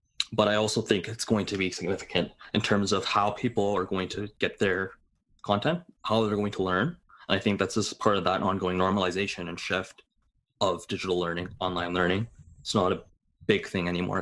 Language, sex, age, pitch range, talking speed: English, male, 20-39, 95-115 Hz, 205 wpm